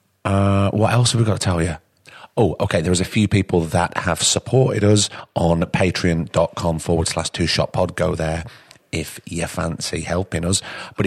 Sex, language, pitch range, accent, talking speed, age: male, English, 80-100 Hz, British, 190 wpm, 30-49